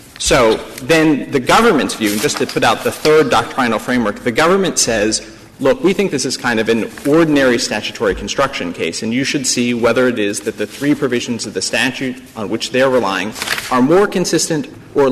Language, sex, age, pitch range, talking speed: English, male, 40-59, 120-160 Hz, 205 wpm